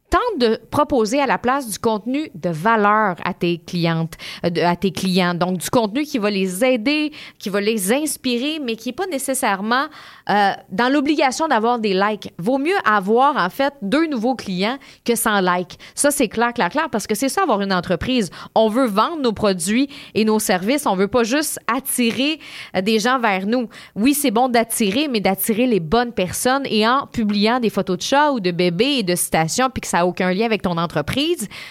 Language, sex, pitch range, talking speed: French, female, 195-260 Hz, 210 wpm